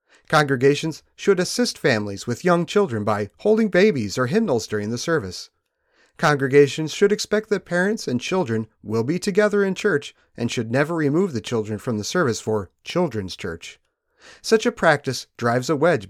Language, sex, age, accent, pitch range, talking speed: English, male, 40-59, American, 115-185 Hz, 170 wpm